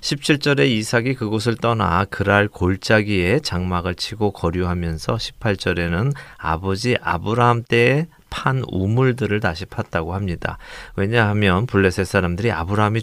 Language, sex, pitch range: Korean, male, 95-120 Hz